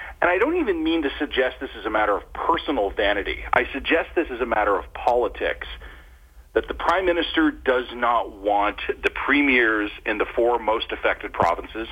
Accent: American